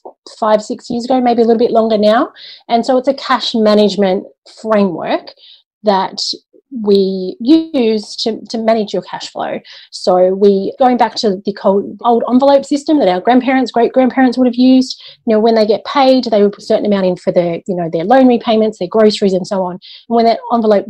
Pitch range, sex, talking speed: 200-260 Hz, female, 205 wpm